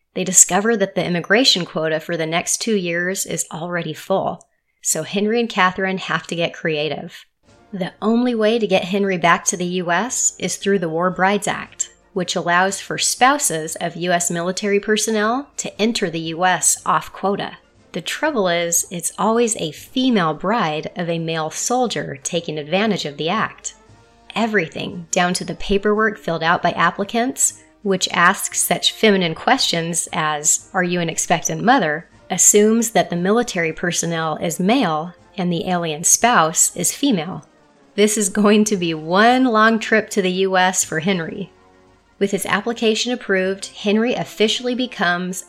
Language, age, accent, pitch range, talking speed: English, 30-49, American, 170-215 Hz, 160 wpm